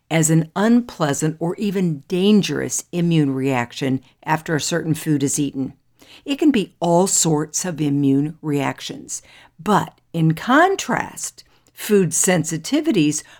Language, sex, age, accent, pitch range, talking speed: English, female, 60-79, American, 150-200 Hz, 120 wpm